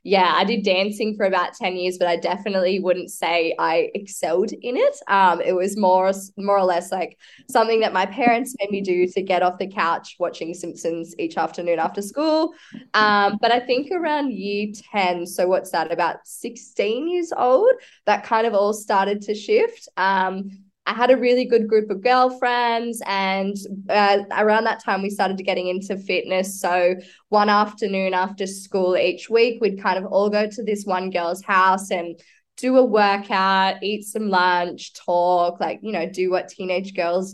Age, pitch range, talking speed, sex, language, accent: 10-29, 185-220 Hz, 185 wpm, female, English, Australian